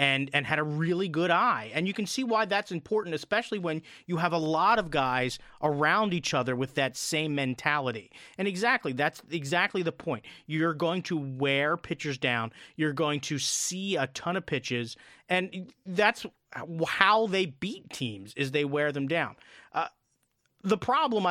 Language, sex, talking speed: English, male, 175 wpm